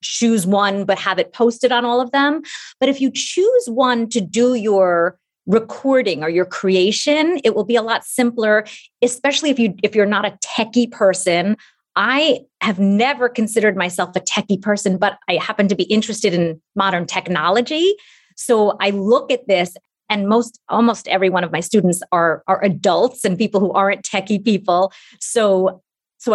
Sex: female